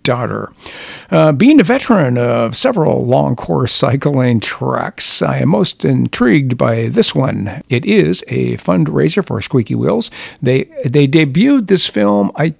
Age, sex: 60-79, male